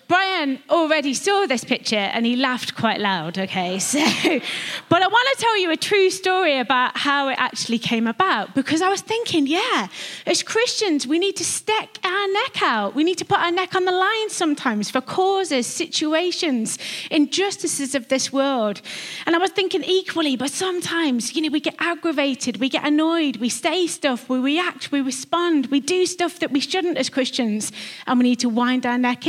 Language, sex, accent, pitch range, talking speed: English, female, British, 250-350 Hz, 195 wpm